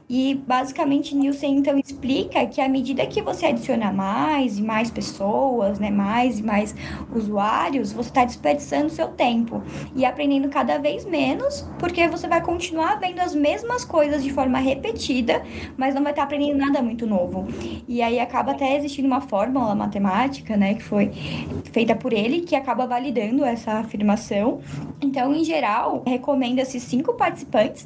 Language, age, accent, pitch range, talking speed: Portuguese, 10-29, Brazilian, 235-285 Hz, 160 wpm